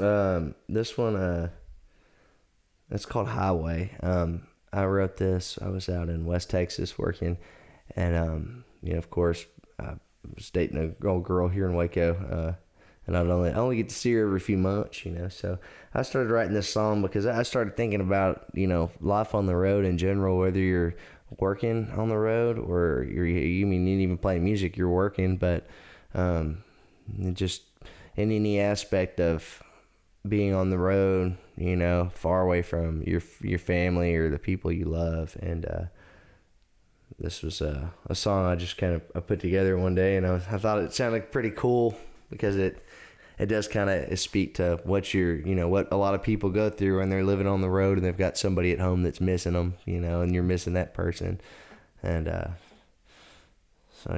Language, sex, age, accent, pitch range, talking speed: English, male, 20-39, American, 85-100 Hz, 195 wpm